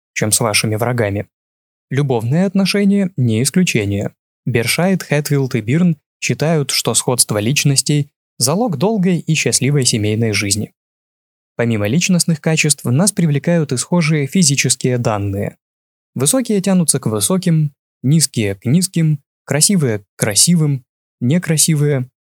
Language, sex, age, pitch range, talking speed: Russian, male, 20-39, 115-160 Hz, 115 wpm